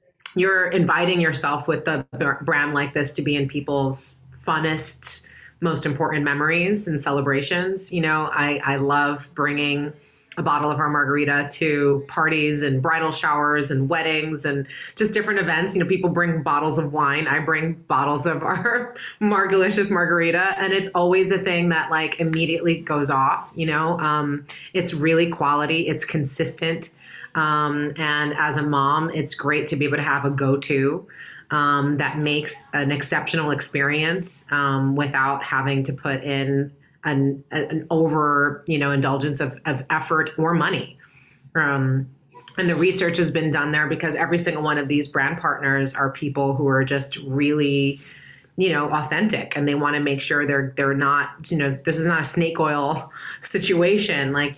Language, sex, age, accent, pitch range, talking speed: English, female, 30-49, American, 145-165 Hz, 165 wpm